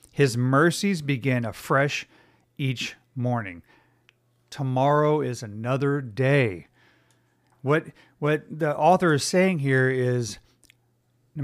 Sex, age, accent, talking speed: male, 40-59, American, 100 wpm